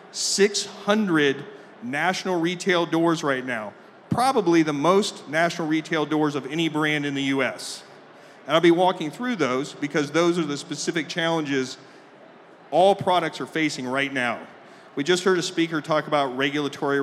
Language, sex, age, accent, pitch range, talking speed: English, male, 40-59, American, 145-190 Hz, 155 wpm